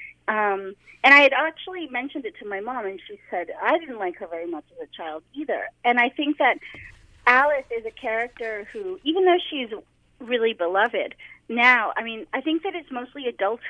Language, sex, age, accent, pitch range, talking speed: English, female, 40-59, American, 195-265 Hz, 200 wpm